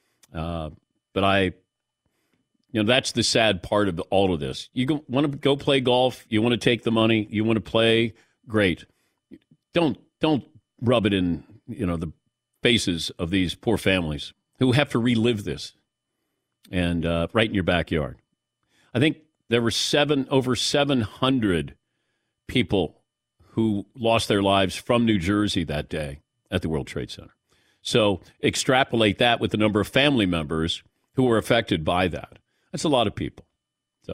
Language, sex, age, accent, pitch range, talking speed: English, male, 50-69, American, 95-140 Hz, 170 wpm